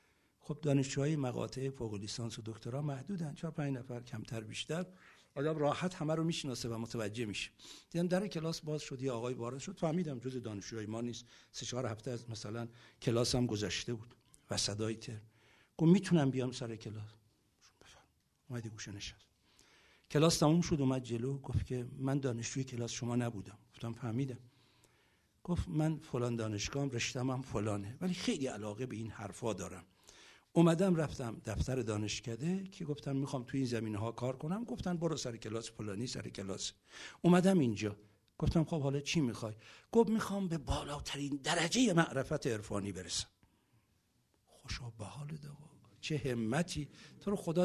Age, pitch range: 60-79, 115-155 Hz